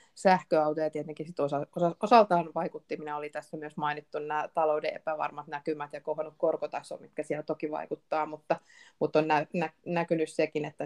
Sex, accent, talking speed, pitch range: female, native, 170 wpm, 155-175 Hz